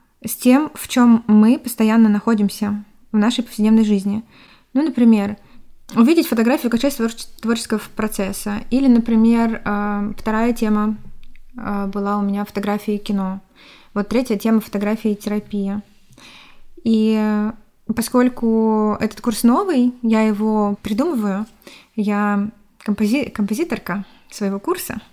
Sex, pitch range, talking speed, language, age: female, 205-230 Hz, 105 wpm, Russian, 20-39